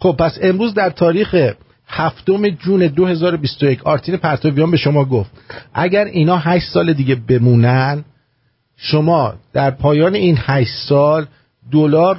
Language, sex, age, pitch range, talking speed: English, male, 50-69, 125-165 Hz, 130 wpm